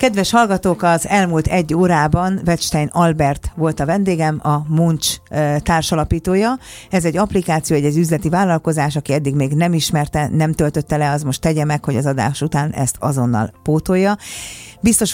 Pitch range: 145-170 Hz